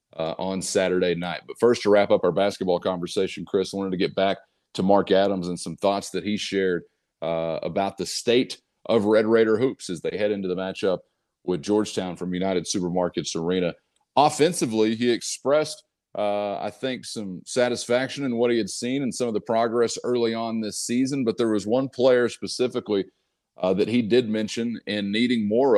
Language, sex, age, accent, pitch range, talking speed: English, male, 40-59, American, 100-125 Hz, 190 wpm